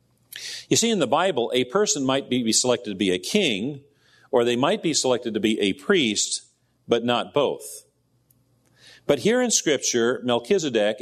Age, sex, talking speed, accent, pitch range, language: 50-69, male, 170 wpm, American, 115-150 Hz, English